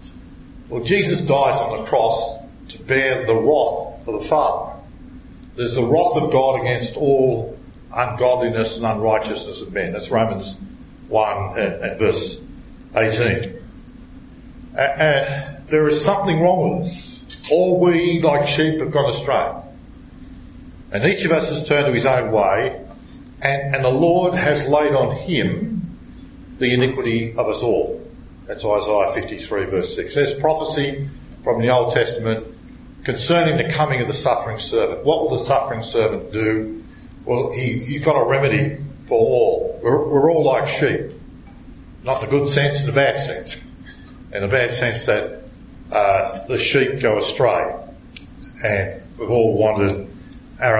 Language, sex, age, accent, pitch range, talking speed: English, male, 50-69, Australian, 120-160 Hz, 155 wpm